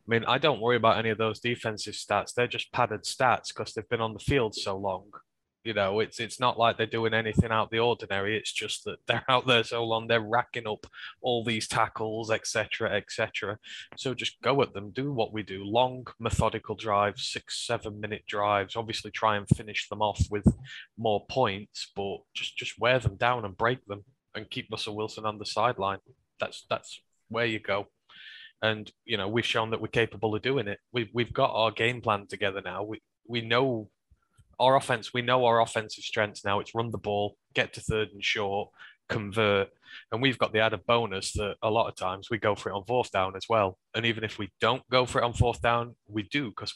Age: 20-39